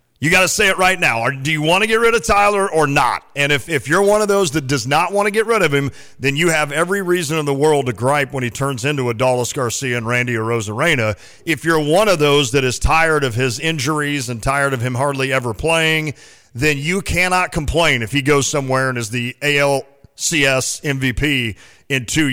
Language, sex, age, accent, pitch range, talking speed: English, male, 40-59, American, 130-160 Hz, 235 wpm